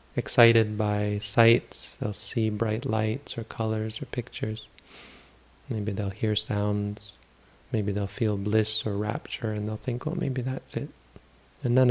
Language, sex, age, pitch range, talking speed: English, male, 20-39, 105-115 Hz, 155 wpm